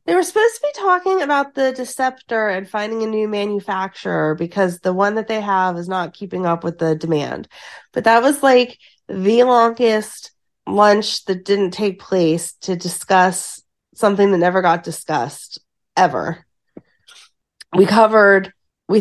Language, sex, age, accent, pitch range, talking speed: English, female, 30-49, American, 170-215 Hz, 155 wpm